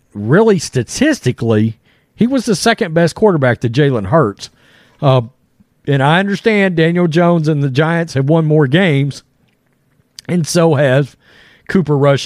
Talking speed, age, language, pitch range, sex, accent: 140 wpm, 40-59, English, 130-180 Hz, male, American